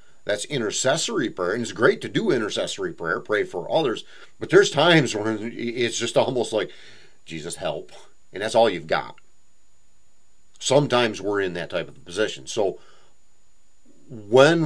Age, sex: 40-59, male